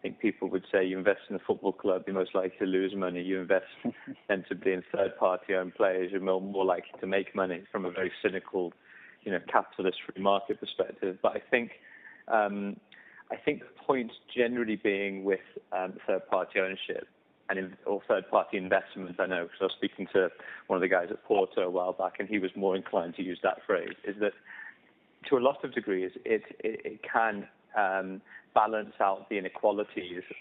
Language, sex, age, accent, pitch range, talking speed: English, male, 30-49, British, 95-105 Hz, 195 wpm